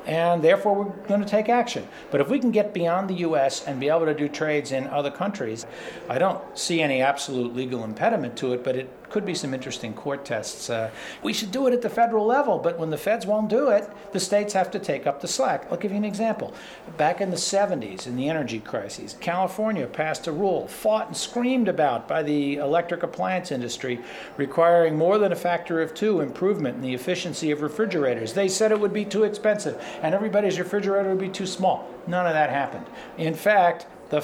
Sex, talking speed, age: male, 220 wpm, 50-69